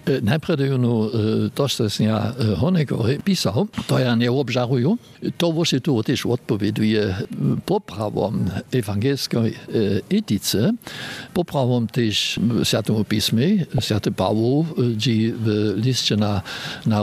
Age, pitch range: 60-79, 115-145 Hz